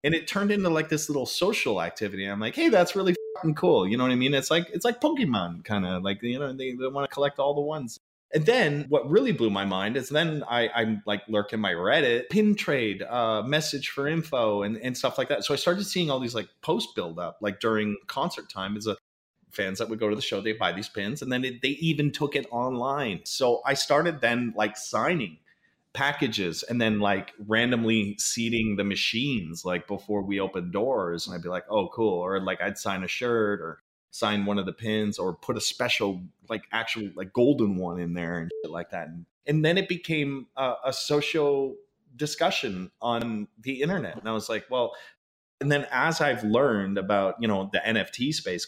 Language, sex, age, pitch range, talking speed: English, male, 30-49, 100-145 Hz, 225 wpm